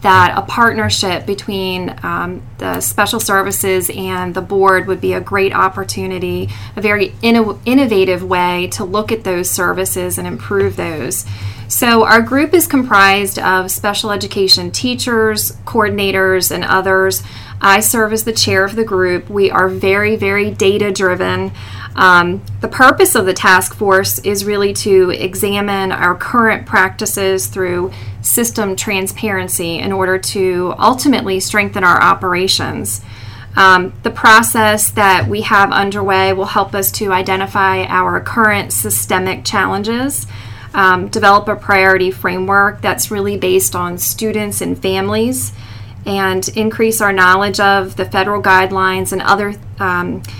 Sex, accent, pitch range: female, American, 125-205 Hz